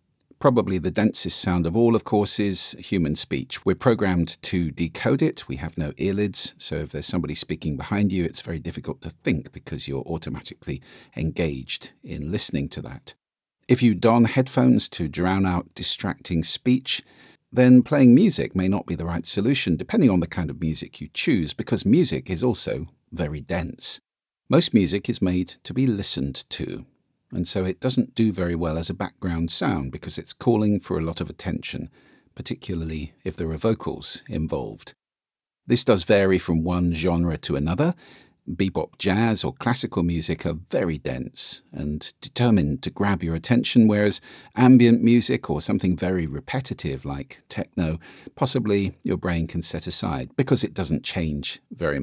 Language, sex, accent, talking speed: English, male, British, 170 wpm